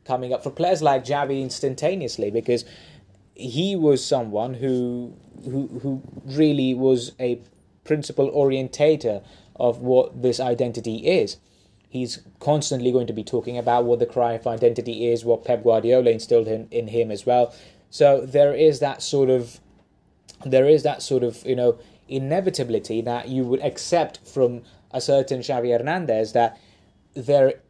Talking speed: 150 wpm